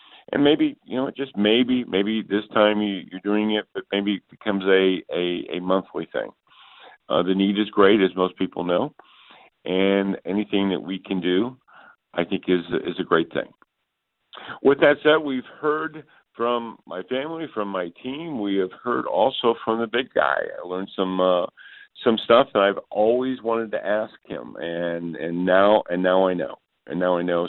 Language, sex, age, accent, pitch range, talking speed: English, male, 50-69, American, 90-115 Hz, 190 wpm